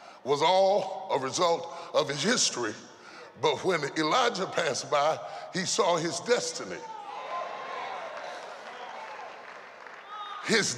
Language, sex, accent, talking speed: English, female, American, 95 wpm